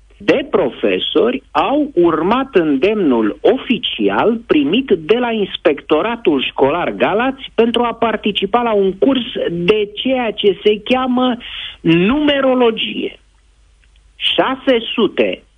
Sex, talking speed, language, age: male, 95 wpm, Romanian, 50-69